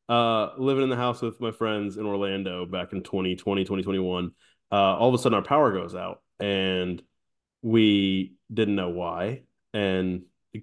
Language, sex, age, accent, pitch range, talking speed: English, male, 20-39, American, 95-115 Hz, 170 wpm